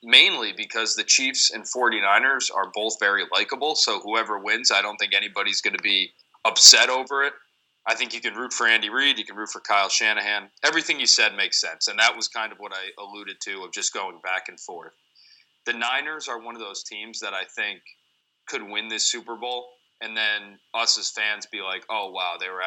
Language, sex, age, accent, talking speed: English, male, 30-49, American, 220 wpm